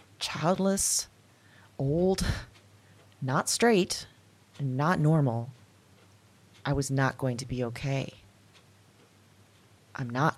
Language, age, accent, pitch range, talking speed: English, 30-49, American, 100-160 Hz, 95 wpm